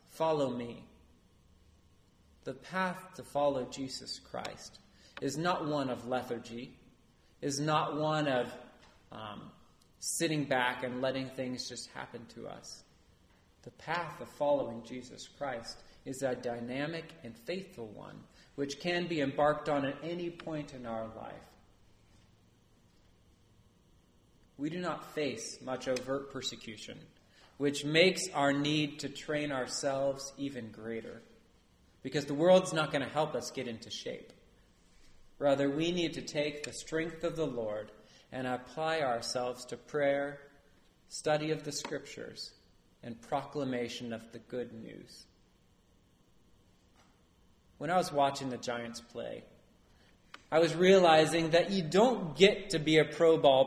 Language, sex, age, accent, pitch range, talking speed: English, male, 30-49, American, 120-155 Hz, 135 wpm